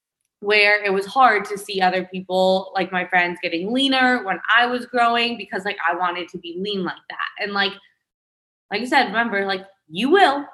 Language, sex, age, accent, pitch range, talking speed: English, female, 20-39, American, 200-265 Hz, 200 wpm